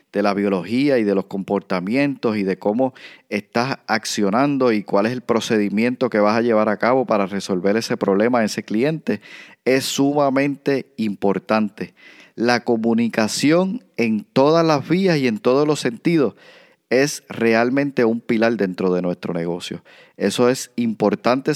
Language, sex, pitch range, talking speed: Spanish, male, 105-135 Hz, 150 wpm